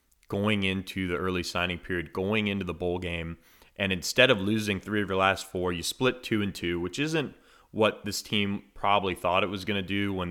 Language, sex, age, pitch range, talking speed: English, male, 30-49, 90-105 Hz, 220 wpm